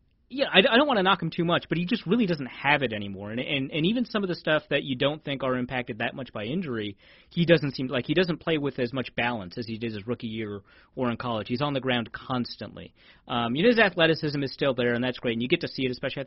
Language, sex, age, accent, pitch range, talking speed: English, male, 30-49, American, 120-150 Hz, 290 wpm